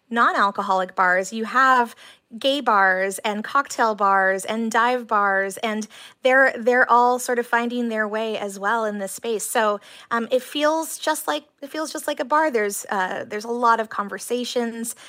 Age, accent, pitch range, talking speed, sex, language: 20-39, American, 200-235 Hz, 180 wpm, female, English